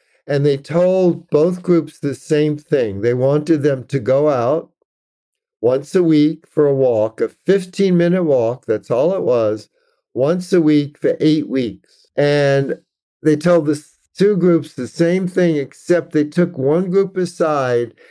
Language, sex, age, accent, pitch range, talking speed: English, male, 50-69, American, 135-175 Hz, 160 wpm